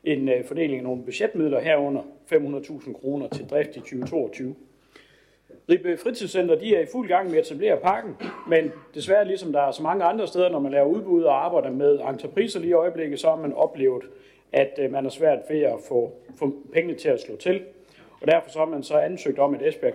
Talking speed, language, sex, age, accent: 205 wpm, Danish, male, 60-79, native